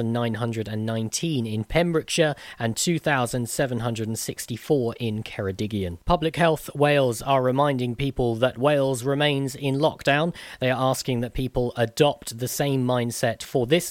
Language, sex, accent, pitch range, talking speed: English, male, British, 120-150 Hz, 125 wpm